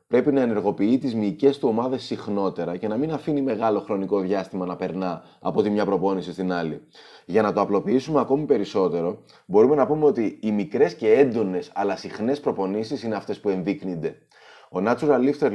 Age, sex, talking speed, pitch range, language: 30-49, male, 180 wpm, 95-130 Hz, Greek